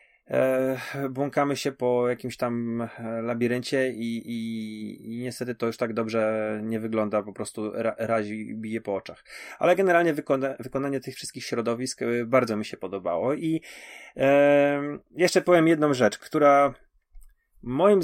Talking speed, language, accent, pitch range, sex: 135 wpm, Polish, native, 110-135 Hz, male